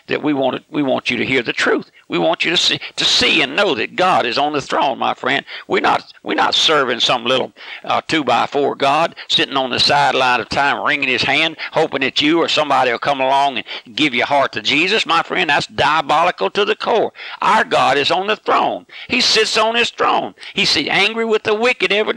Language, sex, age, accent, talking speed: English, male, 60-79, American, 235 wpm